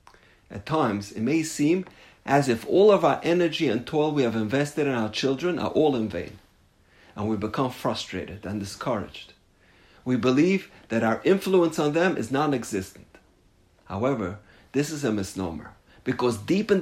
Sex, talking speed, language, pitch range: male, 165 wpm, English, 105-160 Hz